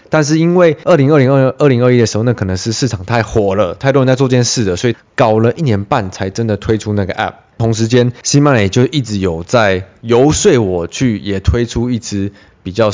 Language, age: Chinese, 20-39